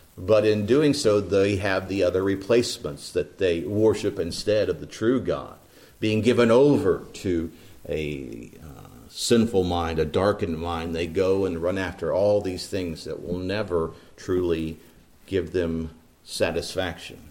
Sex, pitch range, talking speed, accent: male, 90-120 Hz, 150 wpm, American